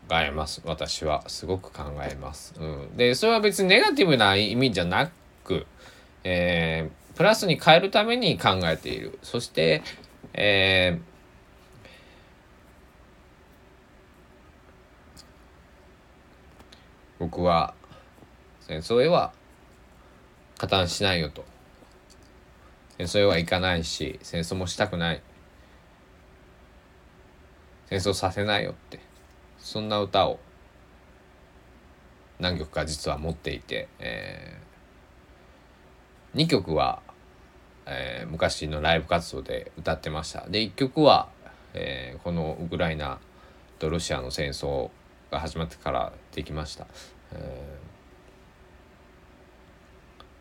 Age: 20-39